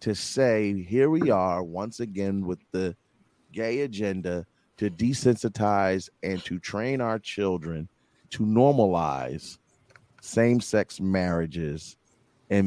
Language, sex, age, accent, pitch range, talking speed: English, male, 40-59, American, 95-135 Hz, 110 wpm